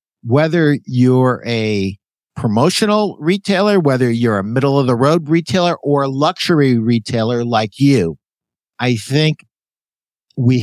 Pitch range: 115-145 Hz